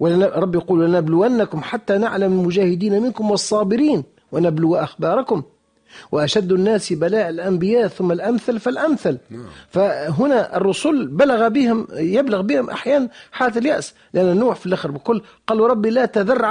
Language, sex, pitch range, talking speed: Arabic, male, 160-250 Hz, 130 wpm